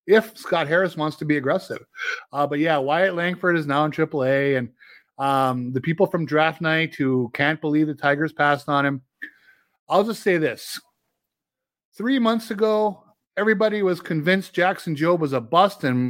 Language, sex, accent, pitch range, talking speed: English, male, American, 140-185 Hz, 175 wpm